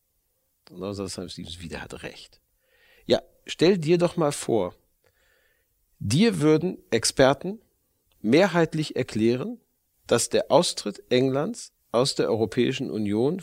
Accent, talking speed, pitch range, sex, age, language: German, 110 wpm, 105-145 Hz, male, 40-59, German